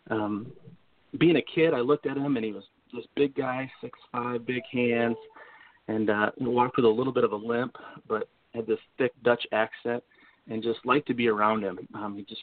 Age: 30-49